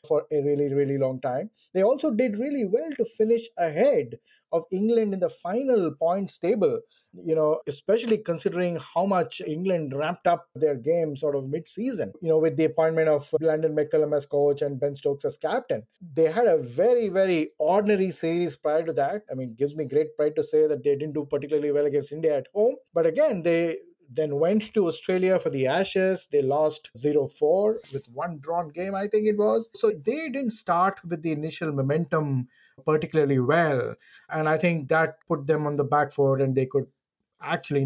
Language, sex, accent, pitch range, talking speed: English, male, Indian, 150-215 Hz, 195 wpm